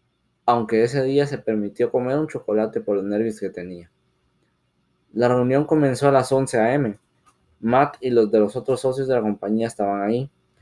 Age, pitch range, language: 20-39, 105-130 Hz, Spanish